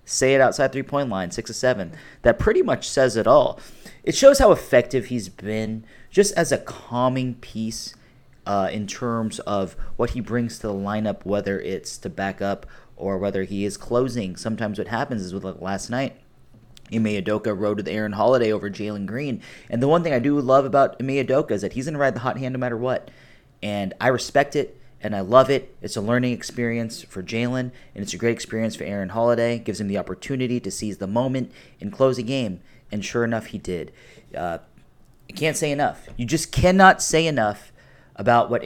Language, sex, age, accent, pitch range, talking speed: English, male, 30-49, American, 100-130 Hz, 205 wpm